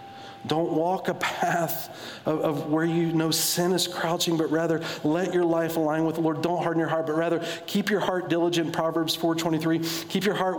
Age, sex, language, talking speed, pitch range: 40-59, male, English, 210 wpm, 150-175 Hz